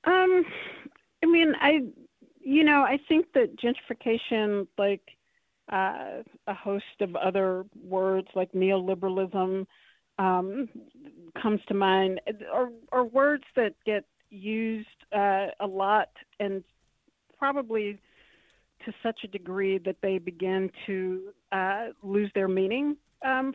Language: English